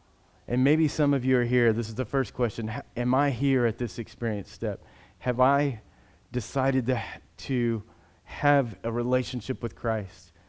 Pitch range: 105-130 Hz